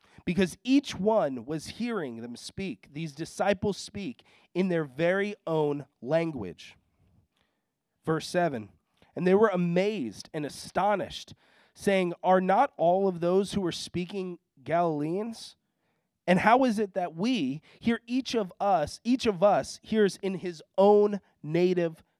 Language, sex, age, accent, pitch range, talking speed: English, male, 30-49, American, 150-195 Hz, 140 wpm